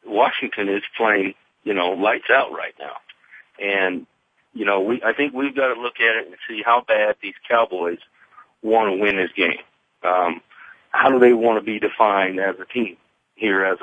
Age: 40-59